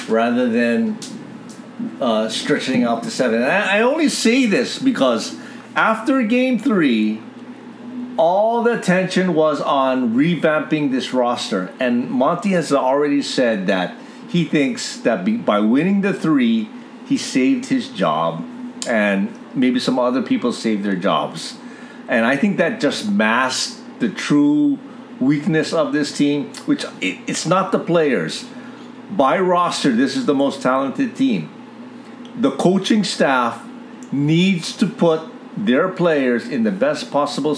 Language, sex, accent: English, male, American